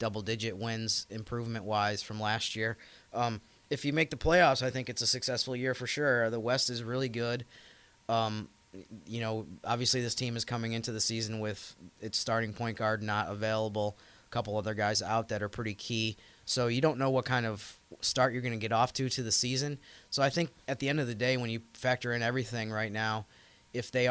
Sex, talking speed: male, 215 wpm